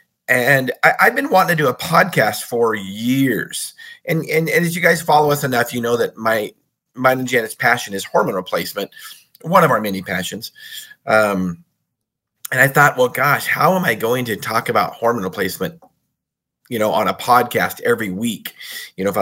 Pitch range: 105-165 Hz